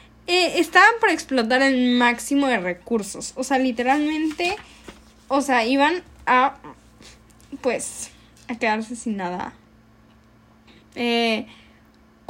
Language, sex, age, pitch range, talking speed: Spanish, female, 10-29, 200-275 Hz, 100 wpm